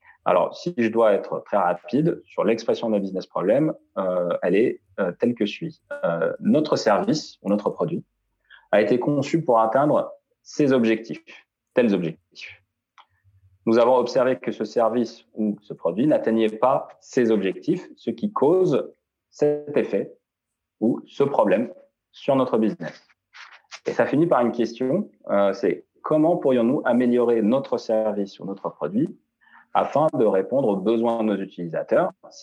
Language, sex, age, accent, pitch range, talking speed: French, male, 30-49, French, 105-125 Hz, 150 wpm